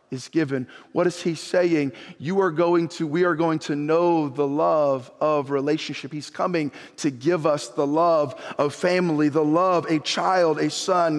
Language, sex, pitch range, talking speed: English, male, 150-190 Hz, 180 wpm